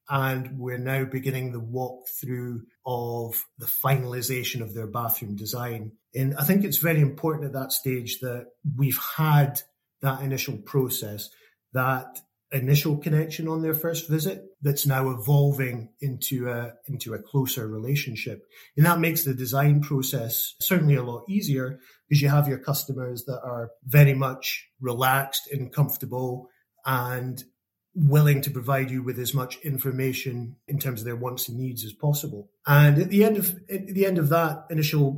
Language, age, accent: English, 30-49, British